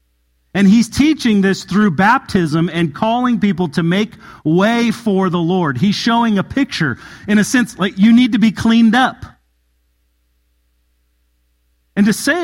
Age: 40-59